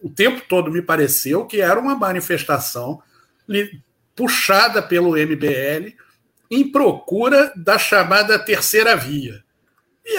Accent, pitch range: Brazilian, 165-245 Hz